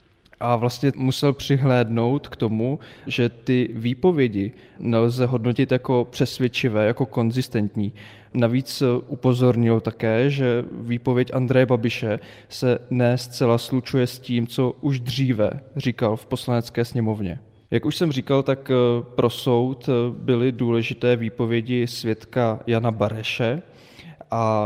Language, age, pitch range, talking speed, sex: Czech, 20-39, 115-130 Hz, 120 wpm, male